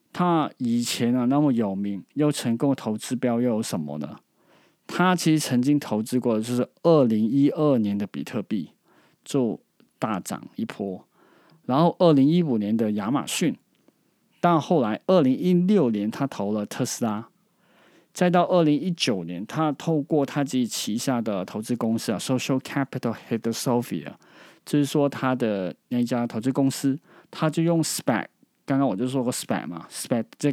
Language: Chinese